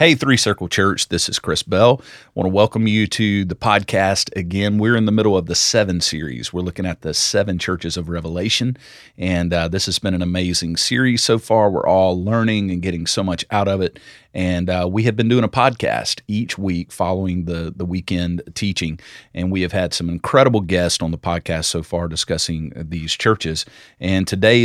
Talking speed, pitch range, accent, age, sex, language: 205 wpm, 90-110 Hz, American, 40-59, male, English